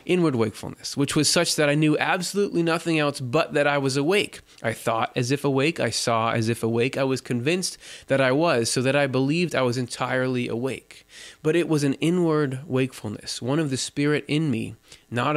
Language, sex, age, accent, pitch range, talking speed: English, male, 20-39, American, 120-155 Hz, 205 wpm